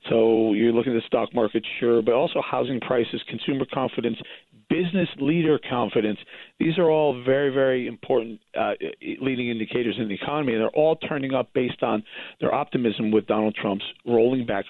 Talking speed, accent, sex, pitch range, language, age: 175 wpm, American, male, 115-150 Hz, English, 40-59